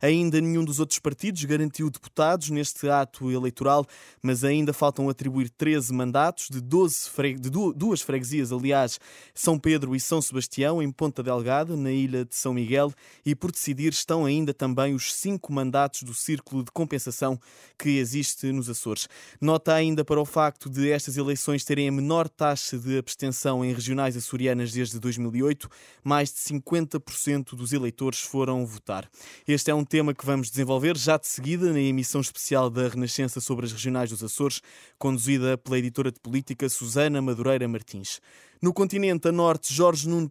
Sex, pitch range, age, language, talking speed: male, 130-150 Hz, 20-39, Portuguese, 170 wpm